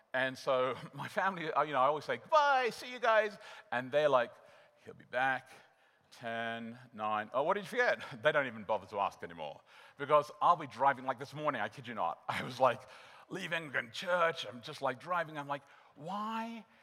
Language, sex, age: English, male, 50-69